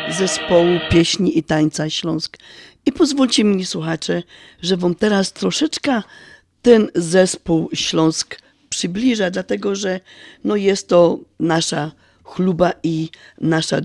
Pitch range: 165-205 Hz